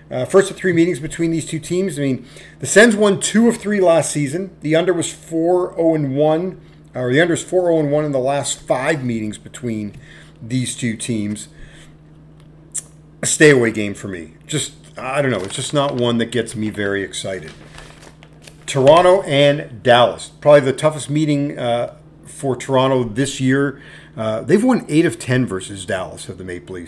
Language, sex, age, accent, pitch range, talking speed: English, male, 40-59, American, 125-160 Hz, 190 wpm